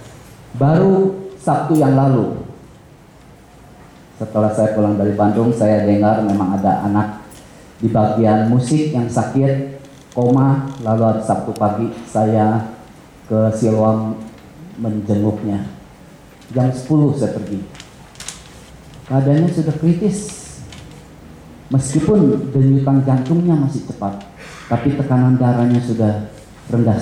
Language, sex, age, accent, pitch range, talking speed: English, male, 30-49, Indonesian, 105-135 Hz, 100 wpm